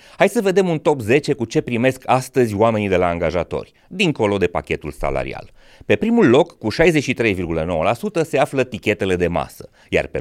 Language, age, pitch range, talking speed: Romanian, 30-49, 90-150 Hz, 175 wpm